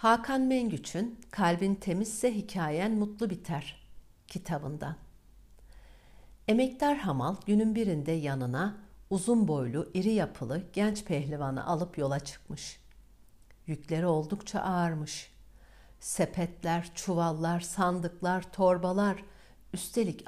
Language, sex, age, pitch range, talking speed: Turkish, female, 60-79, 140-200 Hz, 90 wpm